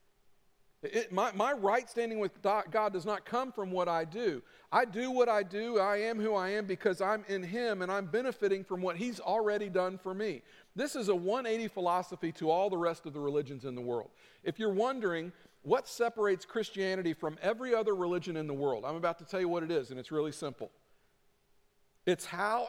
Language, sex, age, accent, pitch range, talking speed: English, male, 50-69, American, 180-220 Hz, 210 wpm